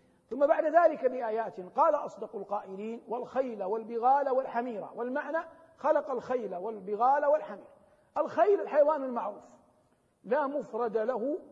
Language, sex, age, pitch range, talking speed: Arabic, male, 50-69, 235-285 Hz, 110 wpm